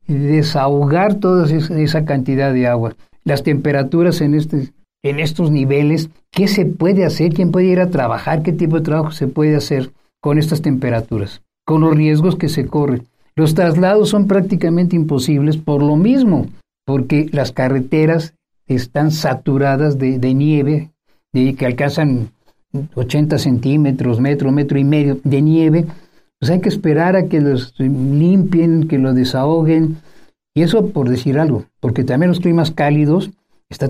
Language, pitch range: Spanish, 135-170 Hz